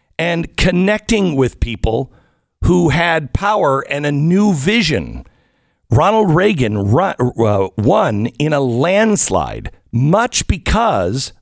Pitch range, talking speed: 120-175 Hz, 100 wpm